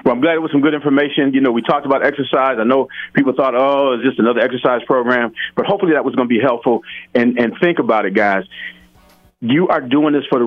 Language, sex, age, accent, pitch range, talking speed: English, male, 40-59, American, 125-165 Hz, 250 wpm